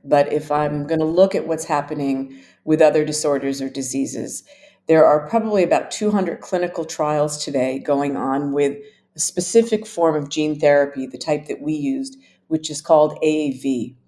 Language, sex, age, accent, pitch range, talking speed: English, female, 50-69, American, 140-170 Hz, 170 wpm